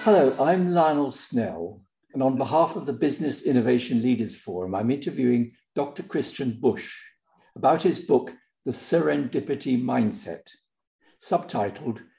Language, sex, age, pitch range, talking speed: English, male, 60-79, 125-180 Hz, 125 wpm